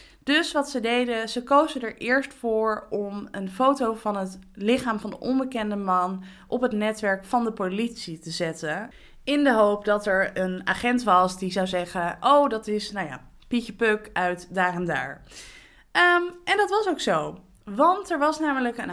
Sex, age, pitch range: female, 20-39, 205-285 Hz